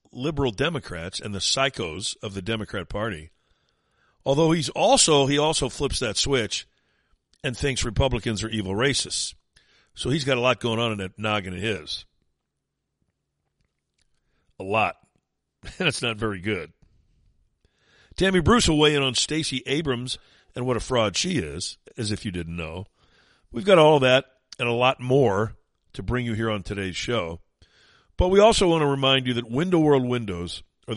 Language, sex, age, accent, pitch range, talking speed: English, male, 50-69, American, 105-145 Hz, 170 wpm